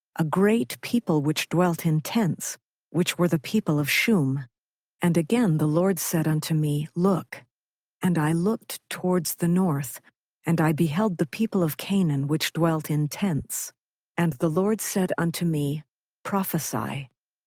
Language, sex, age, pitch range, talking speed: English, female, 50-69, 150-190 Hz, 155 wpm